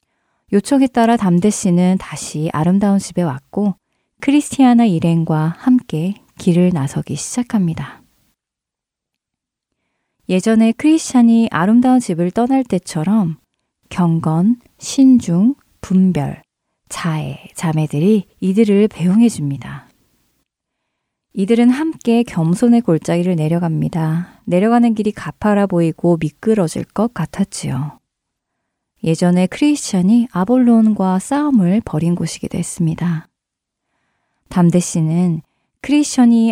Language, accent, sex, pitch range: Korean, native, female, 165-225 Hz